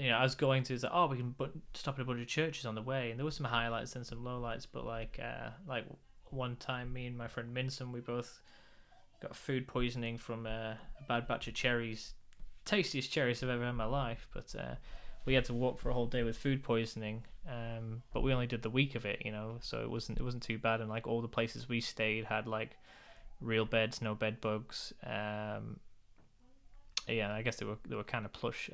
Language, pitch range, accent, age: English, 110-130 Hz, British, 10-29